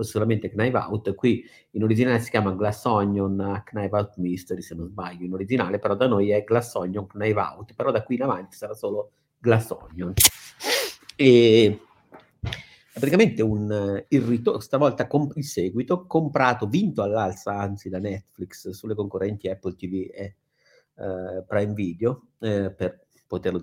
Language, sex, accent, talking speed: Italian, male, native, 160 wpm